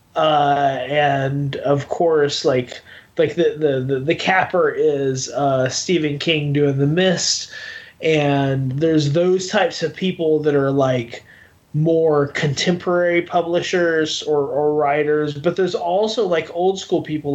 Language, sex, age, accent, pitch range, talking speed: English, male, 20-39, American, 145-175 Hz, 140 wpm